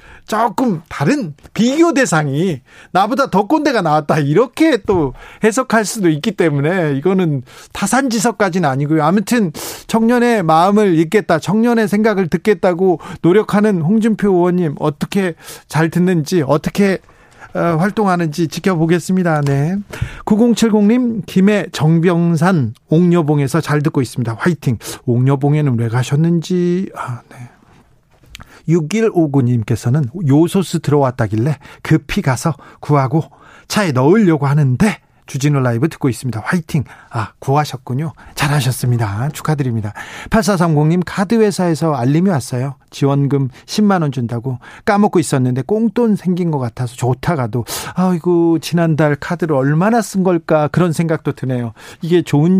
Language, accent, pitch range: Korean, native, 140-195 Hz